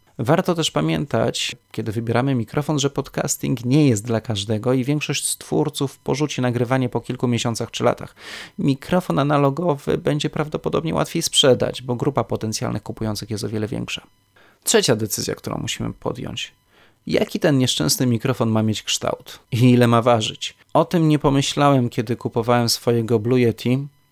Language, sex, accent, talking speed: Polish, male, native, 150 wpm